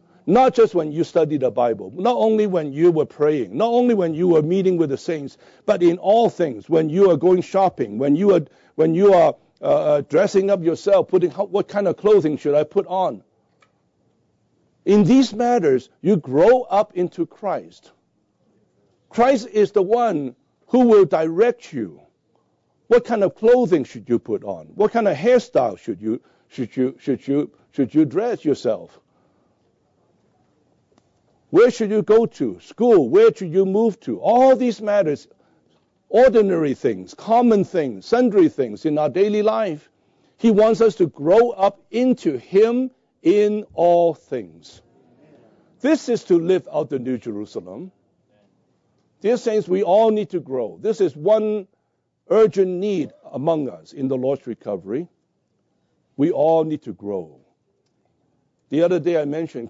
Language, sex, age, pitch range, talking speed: English, male, 60-79, 160-225 Hz, 160 wpm